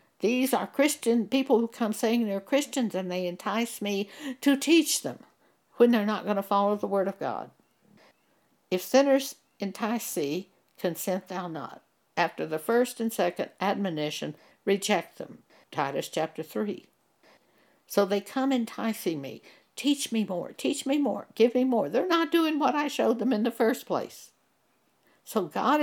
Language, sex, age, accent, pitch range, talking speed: English, female, 60-79, American, 180-255 Hz, 165 wpm